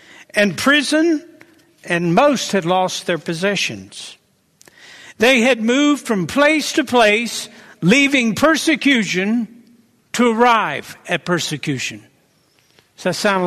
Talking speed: 105 wpm